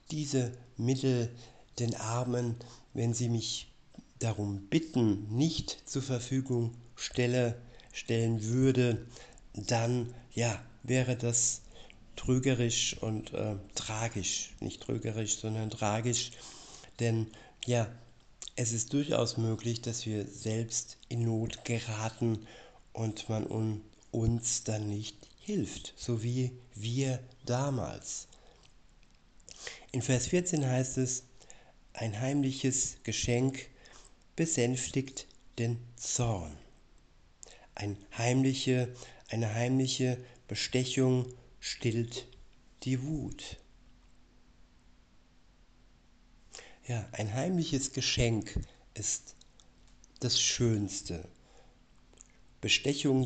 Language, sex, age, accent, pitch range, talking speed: German, male, 60-79, German, 115-130 Hz, 80 wpm